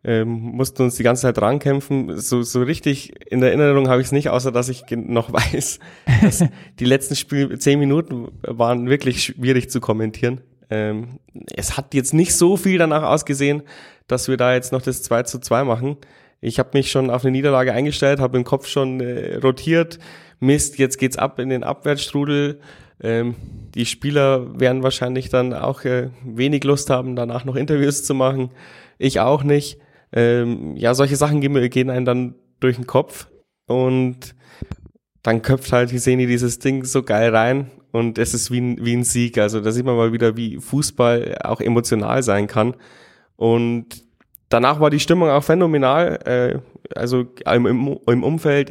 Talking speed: 180 wpm